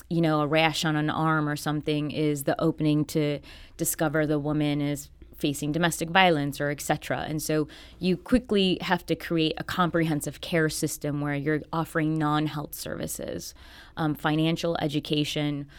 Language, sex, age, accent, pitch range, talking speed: English, female, 20-39, American, 150-165 Hz, 155 wpm